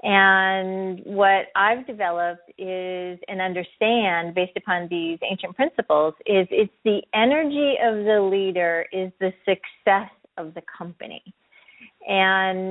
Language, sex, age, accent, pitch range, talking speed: English, female, 30-49, American, 175-210 Hz, 125 wpm